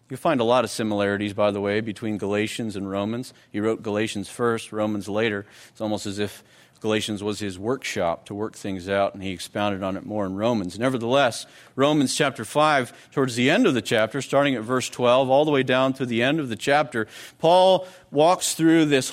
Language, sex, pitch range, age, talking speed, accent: English, male, 110-150 Hz, 40-59, 210 wpm, American